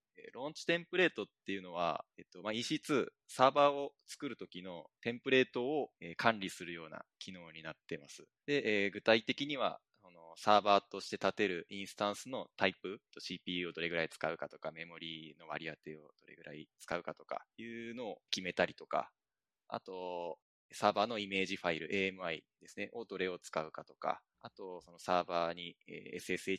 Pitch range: 90-125 Hz